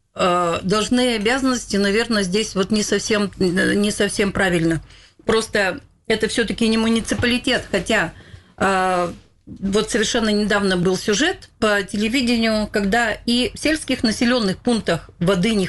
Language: Russian